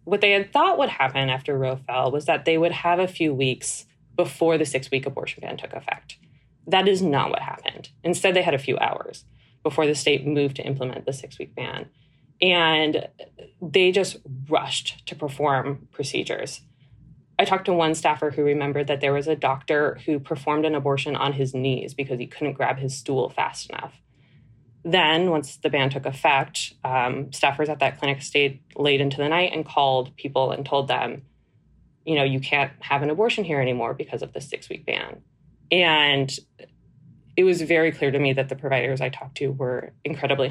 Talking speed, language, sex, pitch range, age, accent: 190 wpm, English, female, 135-155 Hz, 20-39, American